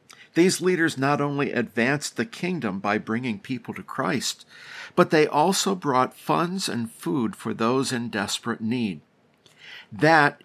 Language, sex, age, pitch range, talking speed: English, male, 50-69, 115-160 Hz, 145 wpm